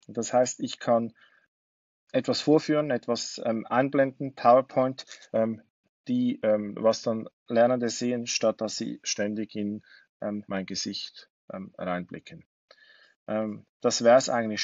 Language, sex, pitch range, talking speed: German, male, 105-125 Hz, 130 wpm